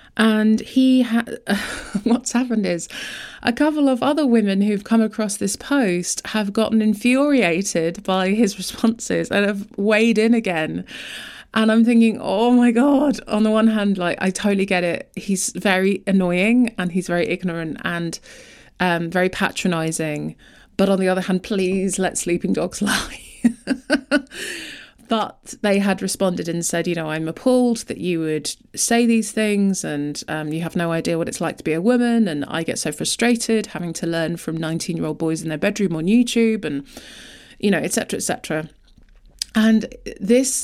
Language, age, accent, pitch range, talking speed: English, 20-39, British, 170-225 Hz, 175 wpm